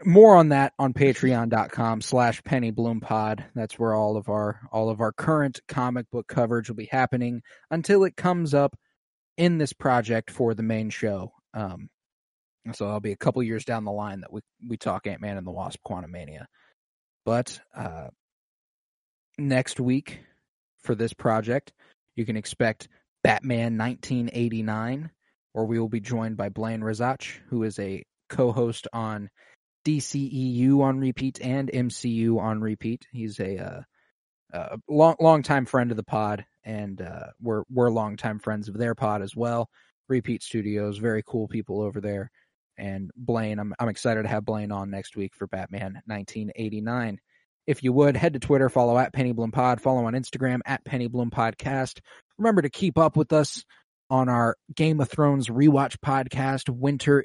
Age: 20-39